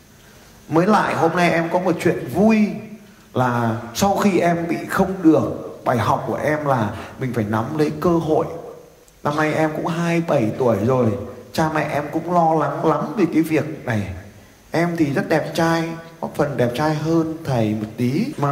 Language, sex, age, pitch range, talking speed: Vietnamese, male, 20-39, 115-155 Hz, 190 wpm